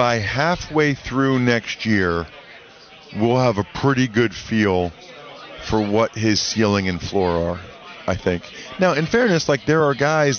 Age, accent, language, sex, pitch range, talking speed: 40-59, American, English, male, 110-150 Hz, 155 wpm